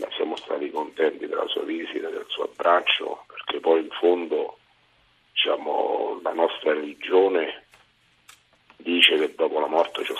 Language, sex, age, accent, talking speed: Italian, male, 50-69, native, 130 wpm